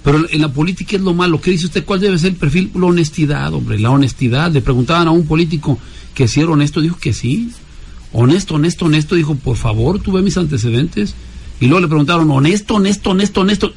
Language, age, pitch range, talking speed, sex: Spanish, 50-69, 130-175 Hz, 220 wpm, male